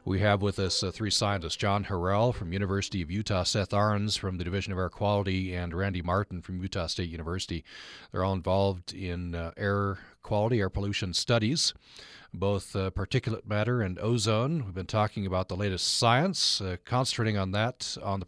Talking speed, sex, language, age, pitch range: 185 wpm, male, English, 40-59, 95-115 Hz